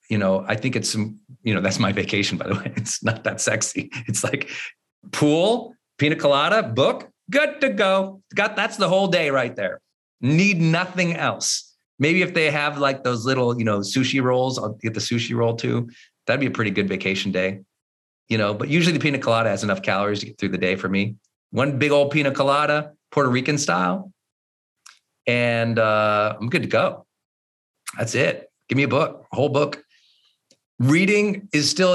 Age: 40-59